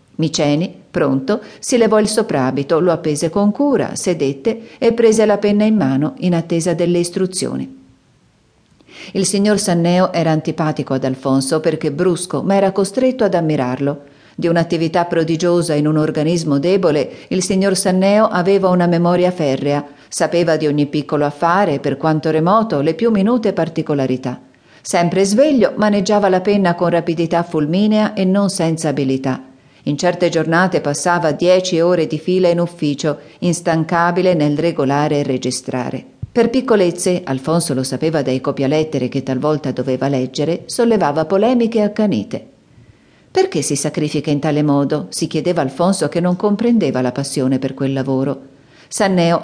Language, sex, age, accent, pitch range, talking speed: Italian, female, 50-69, native, 145-195 Hz, 145 wpm